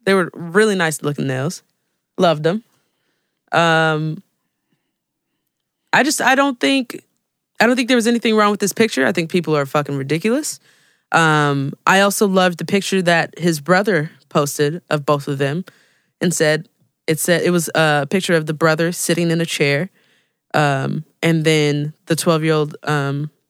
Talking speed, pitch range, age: 165 wpm, 150-195 Hz, 20-39